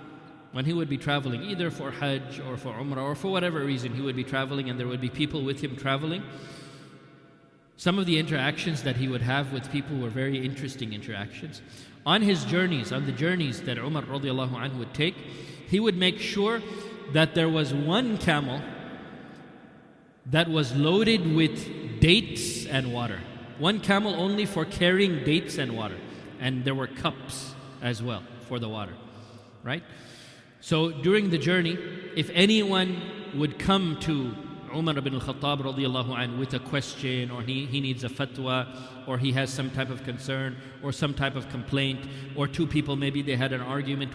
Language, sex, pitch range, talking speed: English, male, 130-170 Hz, 170 wpm